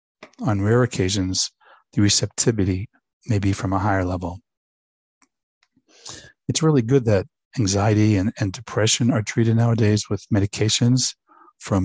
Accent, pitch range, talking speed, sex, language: American, 100-125 Hz, 125 wpm, male, English